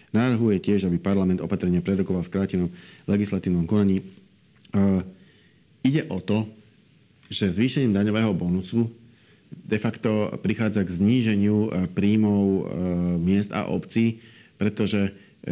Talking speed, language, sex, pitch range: 105 wpm, Slovak, male, 90-100 Hz